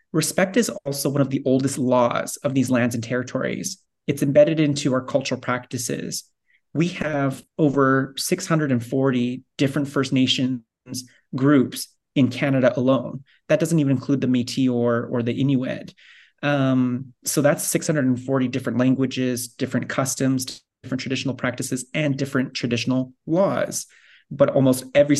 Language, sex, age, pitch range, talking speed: English, male, 30-49, 125-140 Hz, 140 wpm